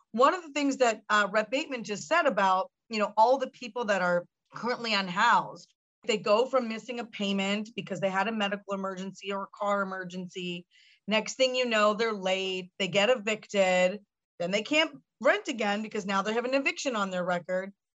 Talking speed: 195 wpm